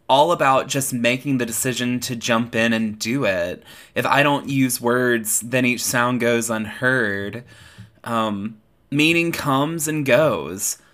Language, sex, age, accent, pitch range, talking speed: English, male, 20-39, American, 110-130 Hz, 150 wpm